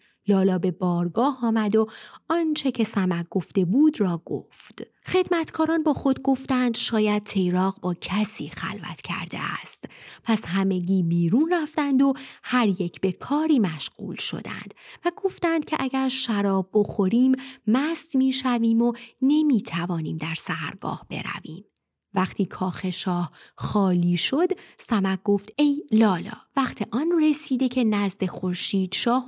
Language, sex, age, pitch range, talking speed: Persian, female, 30-49, 190-265 Hz, 130 wpm